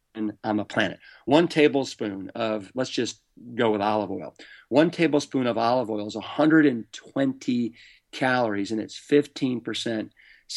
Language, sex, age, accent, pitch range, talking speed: English, male, 40-59, American, 110-140 Hz, 130 wpm